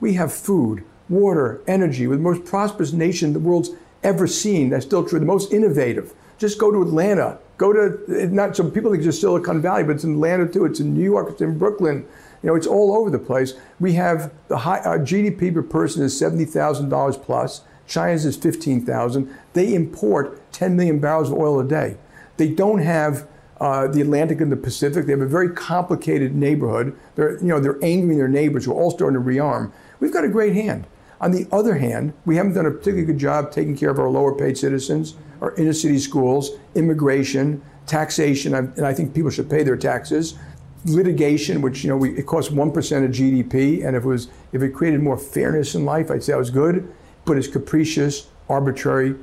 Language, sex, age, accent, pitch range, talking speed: English, male, 50-69, American, 140-175 Hz, 205 wpm